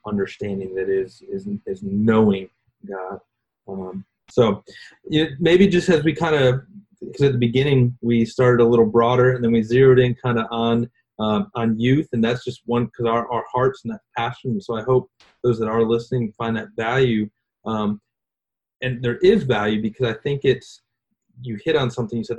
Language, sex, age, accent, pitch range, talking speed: English, male, 30-49, American, 110-135 Hz, 195 wpm